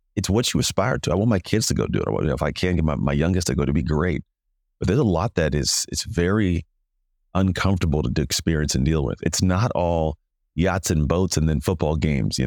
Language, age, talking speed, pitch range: English, 30-49, 265 wpm, 75-95 Hz